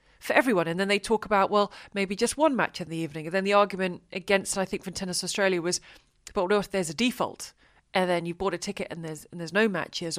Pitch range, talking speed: 190-235 Hz, 260 wpm